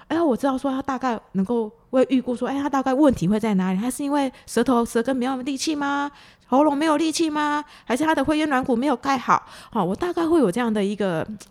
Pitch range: 200-265 Hz